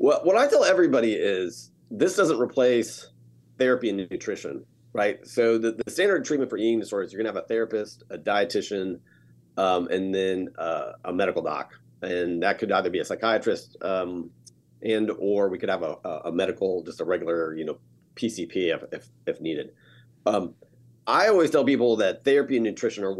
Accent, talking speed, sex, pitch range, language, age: American, 180 wpm, male, 90-120 Hz, English, 40-59